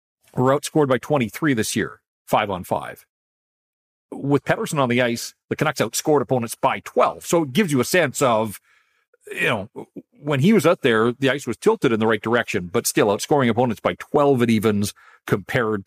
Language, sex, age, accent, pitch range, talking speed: English, male, 40-59, American, 115-175 Hz, 195 wpm